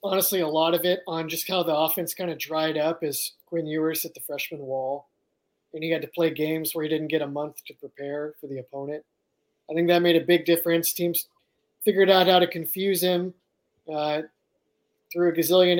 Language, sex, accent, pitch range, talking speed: English, male, American, 155-175 Hz, 215 wpm